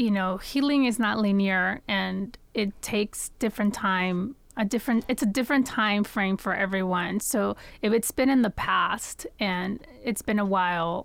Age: 30-49